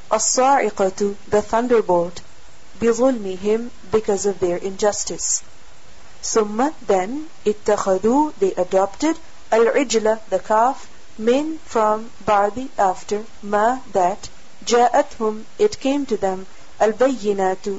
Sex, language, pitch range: female, English, 200-250 Hz